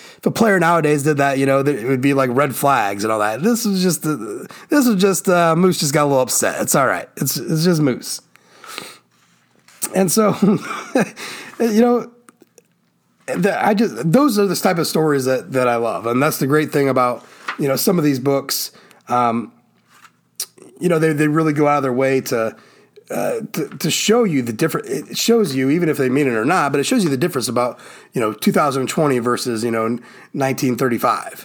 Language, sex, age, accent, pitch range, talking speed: English, male, 30-49, American, 135-190 Hz, 205 wpm